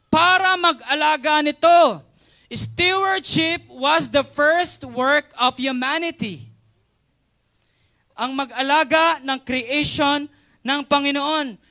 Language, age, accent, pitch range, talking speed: Filipino, 20-39, native, 230-300 Hz, 85 wpm